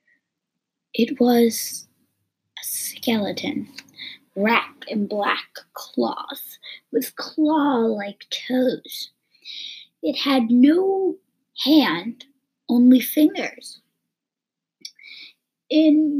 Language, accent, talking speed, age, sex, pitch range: English, American, 65 wpm, 20-39, female, 220-275 Hz